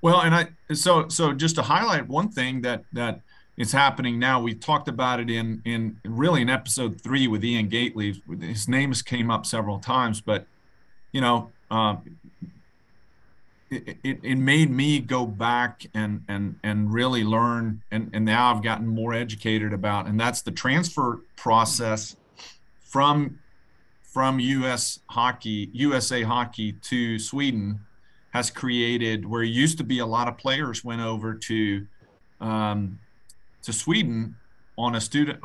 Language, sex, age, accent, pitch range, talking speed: English, male, 40-59, American, 110-130 Hz, 155 wpm